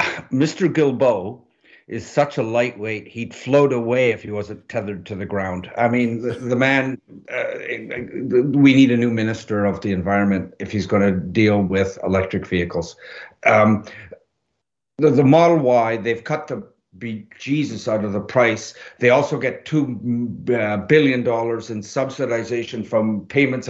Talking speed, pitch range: 155 wpm, 105-130 Hz